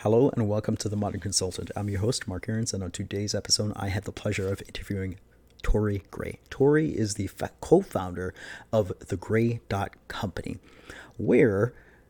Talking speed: 175 wpm